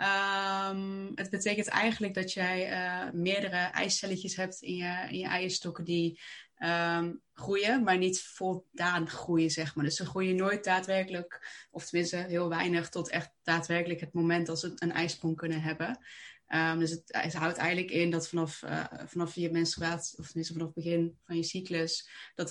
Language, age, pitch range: Dutch, 20-39, 170-185 Hz